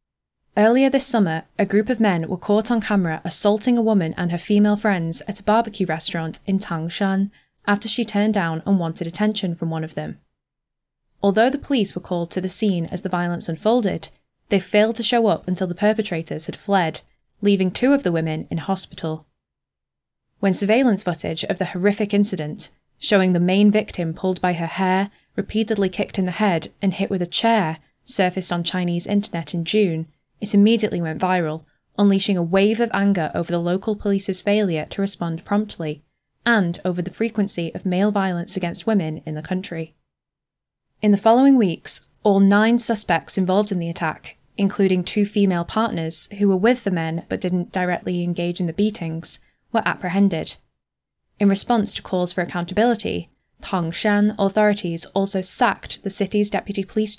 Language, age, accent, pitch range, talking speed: English, 10-29, British, 175-210 Hz, 175 wpm